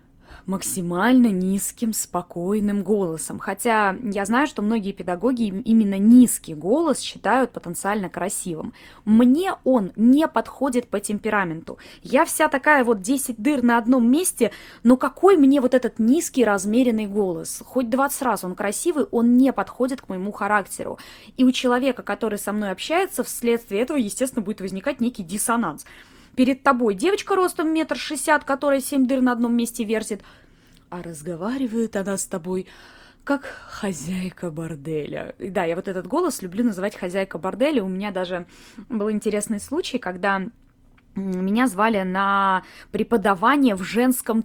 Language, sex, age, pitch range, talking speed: Russian, female, 20-39, 195-255 Hz, 145 wpm